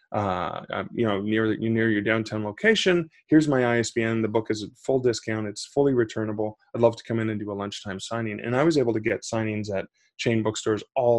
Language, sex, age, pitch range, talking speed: English, male, 20-39, 110-135 Hz, 225 wpm